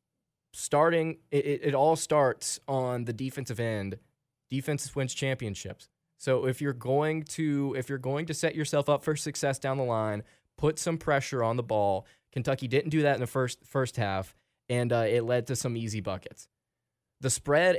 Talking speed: 180 wpm